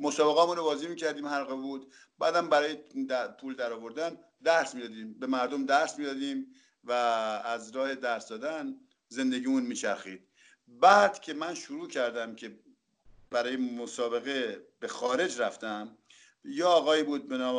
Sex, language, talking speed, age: male, Persian, 135 wpm, 50-69